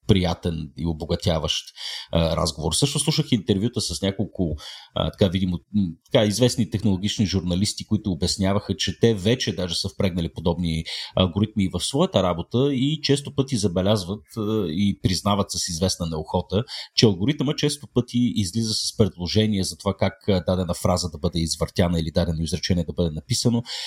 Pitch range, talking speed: 90-125 Hz, 140 wpm